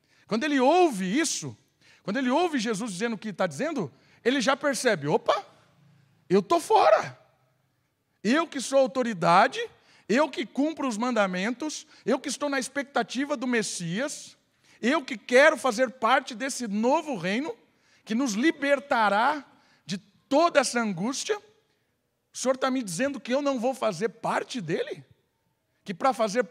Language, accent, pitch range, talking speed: Portuguese, Brazilian, 185-275 Hz, 150 wpm